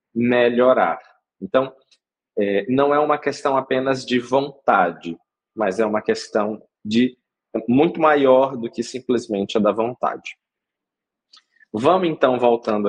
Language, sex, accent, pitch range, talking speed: Portuguese, male, Brazilian, 110-140 Hz, 115 wpm